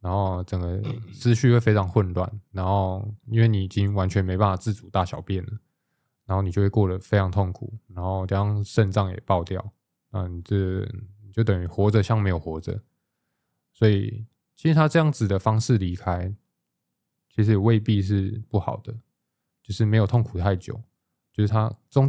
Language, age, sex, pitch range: Chinese, 20-39, male, 95-115 Hz